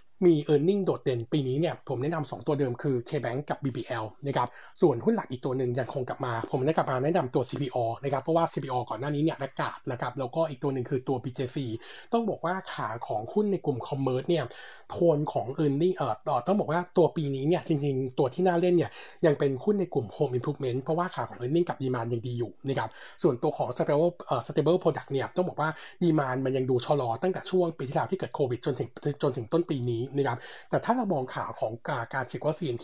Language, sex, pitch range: Thai, male, 130-170 Hz